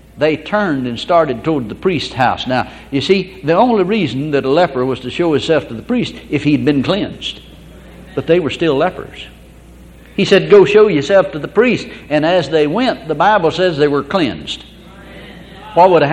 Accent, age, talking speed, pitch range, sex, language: American, 60-79, 200 wpm, 135-190 Hz, male, English